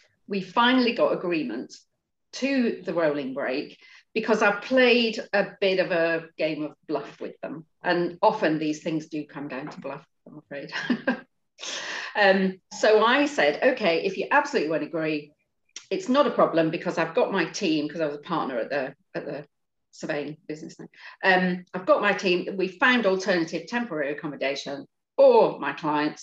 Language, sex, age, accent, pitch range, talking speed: English, female, 40-59, British, 155-220 Hz, 170 wpm